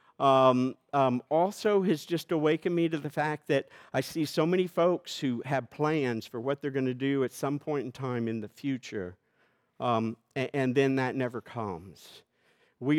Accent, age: American, 50-69